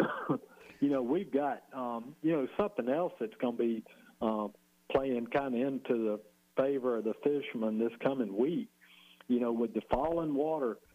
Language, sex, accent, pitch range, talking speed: English, male, American, 110-130 Hz, 175 wpm